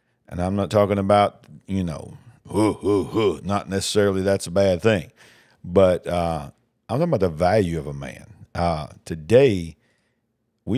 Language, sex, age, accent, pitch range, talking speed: English, male, 50-69, American, 85-110 Hz, 145 wpm